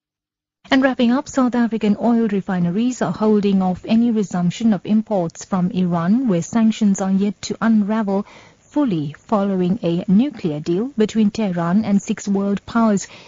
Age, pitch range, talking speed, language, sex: 30-49, 175-225 Hz, 150 wpm, English, female